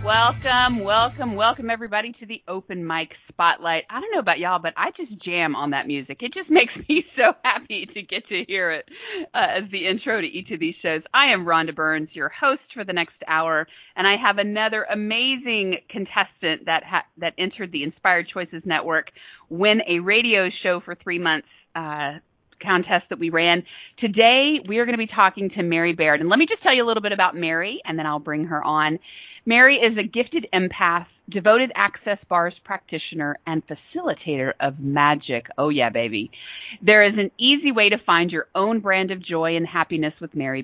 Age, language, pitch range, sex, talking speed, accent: 40-59, English, 160-220 Hz, female, 200 wpm, American